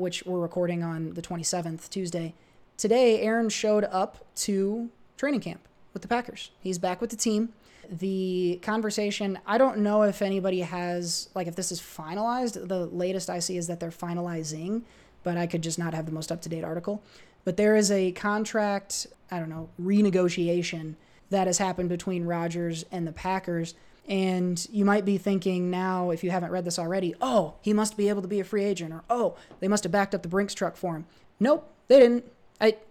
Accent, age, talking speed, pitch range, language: American, 20-39, 195 wpm, 175-210 Hz, English